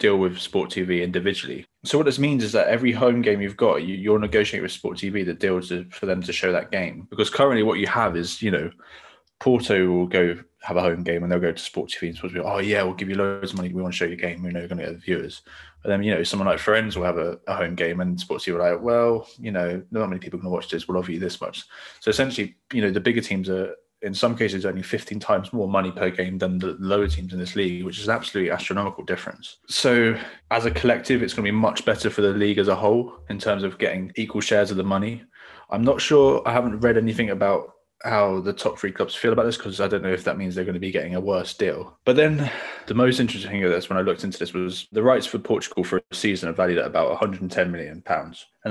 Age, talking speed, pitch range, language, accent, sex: 20-39, 275 wpm, 90-110 Hz, English, British, male